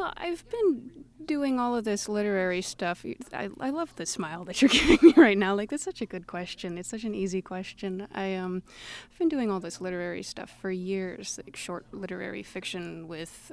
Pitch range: 185-255 Hz